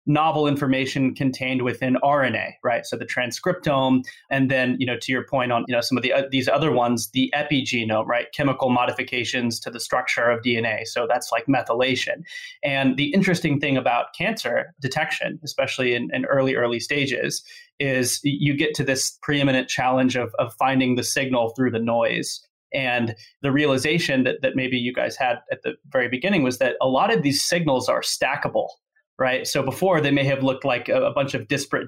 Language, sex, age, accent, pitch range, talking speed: English, male, 20-39, American, 125-145 Hz, 190 wpm